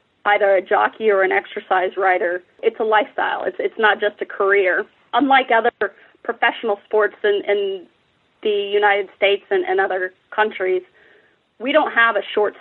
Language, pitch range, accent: English, 210-305 Hz, American